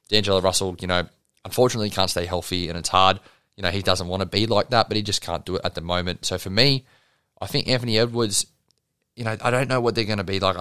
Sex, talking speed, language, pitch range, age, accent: male, 265 wpm, English, 100-120 Hz, 20-39, Australian